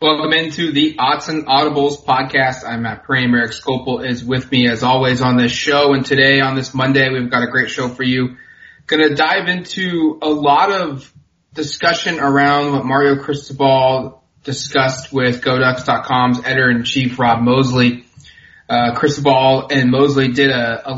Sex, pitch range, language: male, 125-145 Hz, English